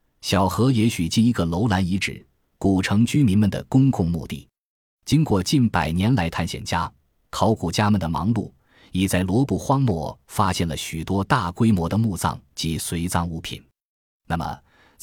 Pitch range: 90-120 Hz